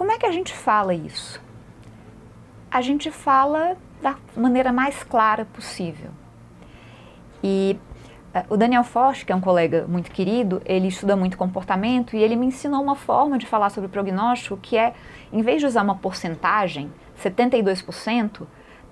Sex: female